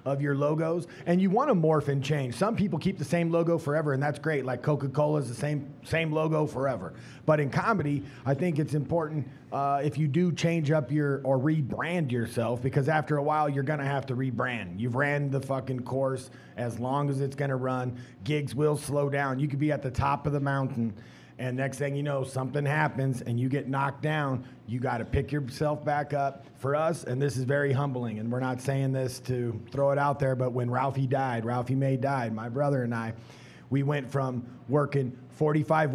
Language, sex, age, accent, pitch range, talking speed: English, male, 30-49, American, 130-150 Hz, 220 wpm